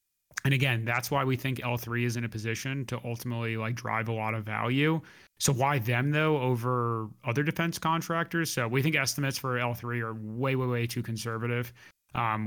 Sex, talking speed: male, 190 wpm